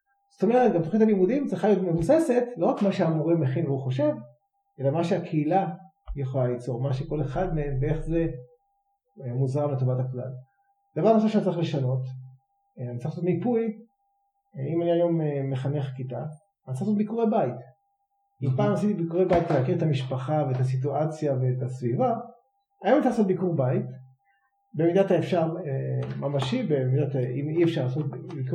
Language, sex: Hebrew, male